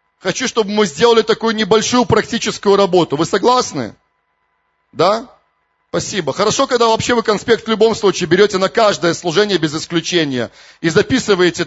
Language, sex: Russian, male